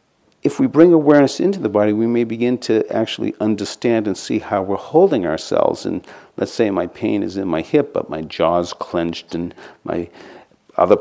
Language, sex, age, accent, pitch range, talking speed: English, male, 50-69, American, 95-125 Hz, 190 wpm